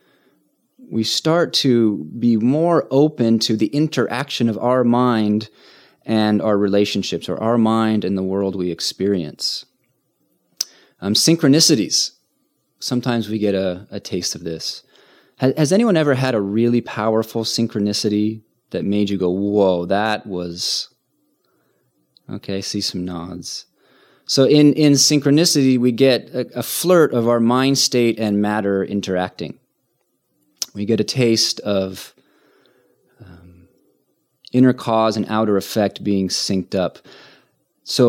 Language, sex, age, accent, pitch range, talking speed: English, male, 30-49, American, 100-125 Hz, 135 wpm